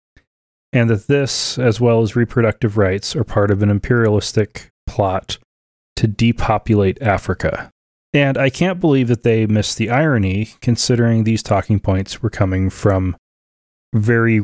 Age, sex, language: 30-49, male, English